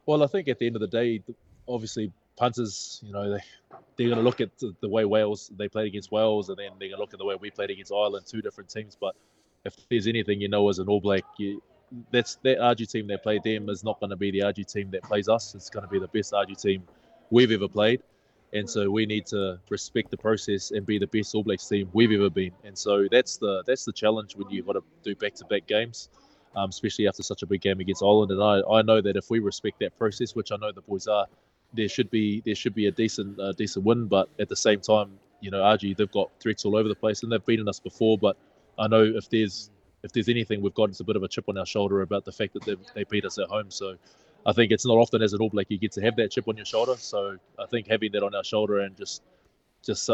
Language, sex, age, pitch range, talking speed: English, male, 20-39, 100-110 Hz, 270 wpm